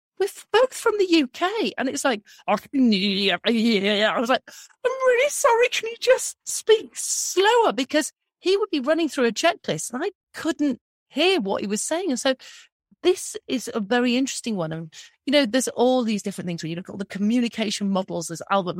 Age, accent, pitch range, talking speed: 40-59, British, 185-275 Hz, 195 wpm